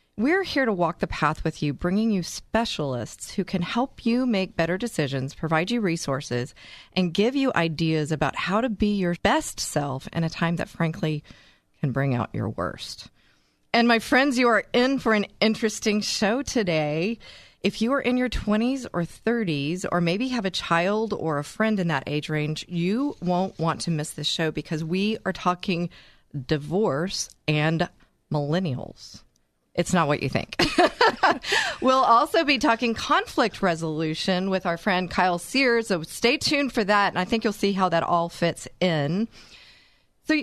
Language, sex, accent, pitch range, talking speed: English, female, American, 155-220 Hz, 175 wpm